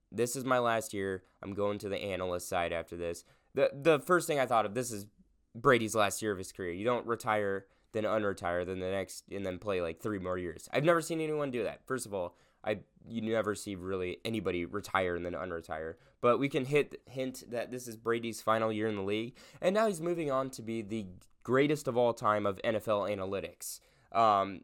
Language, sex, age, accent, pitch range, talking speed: English, male, 20-39, American, 100-130 Hz, 225 wpm